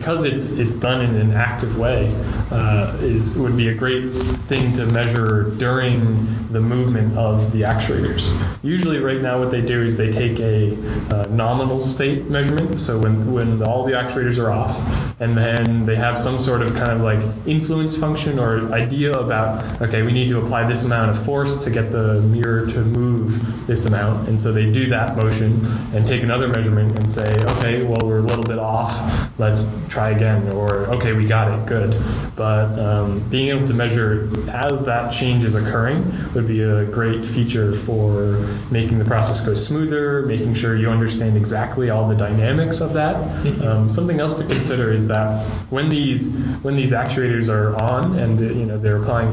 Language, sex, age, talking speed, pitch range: English, male, 20-39, 190 wpm, 110-125 Hz